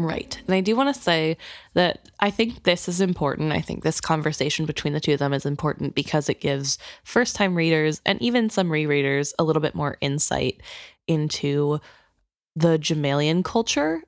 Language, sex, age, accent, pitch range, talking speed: English, female, 10-29, American, 150-185 Hz, 185 wpm